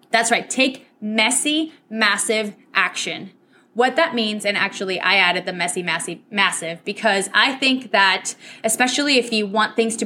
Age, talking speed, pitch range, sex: 20-39, 160 wpm, 200-260 Hz, female